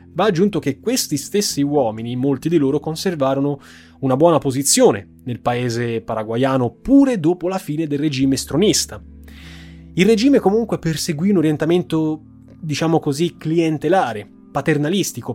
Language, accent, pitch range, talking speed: Italian, native, 115-155 Hz, 130 wpm